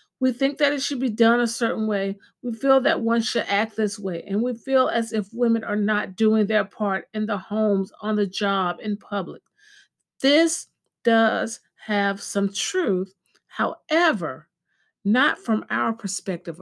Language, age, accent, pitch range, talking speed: English, 50-69, American, 185-230 Hz, 170 wpm